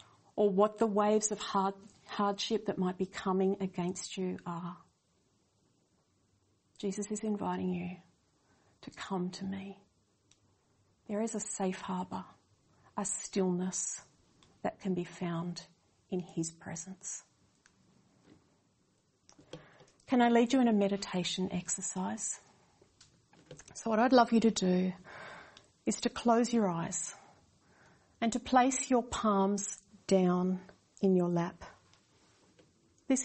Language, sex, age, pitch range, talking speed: English, female, 40-59, 185-225 Hz, 115 wpm